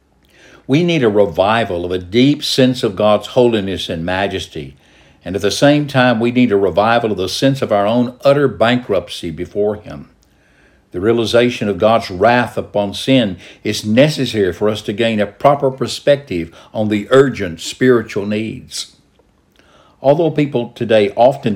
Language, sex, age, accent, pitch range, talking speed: English, male, 60-79, American, 100-130 Hz, 160 wpm